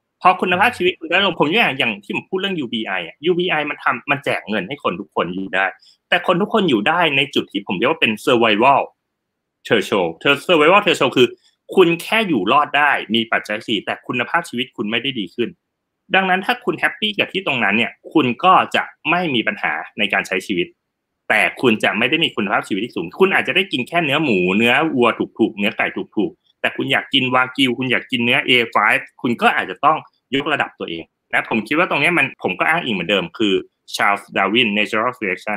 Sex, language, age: male, Thai, 30-49